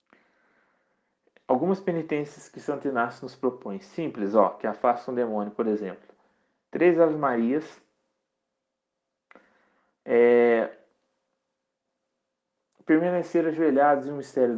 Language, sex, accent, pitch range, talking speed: Portuguese, male, Brazilian, 110-155 Hz, 100 wpm